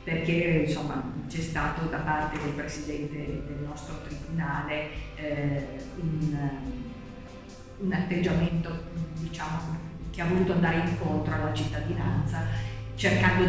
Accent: native